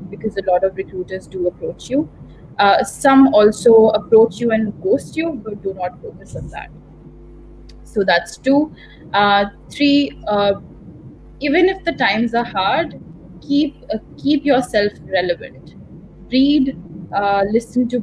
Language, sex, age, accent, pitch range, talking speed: English, female, 20-39, Indian, 185-240 Hz, 145 wpm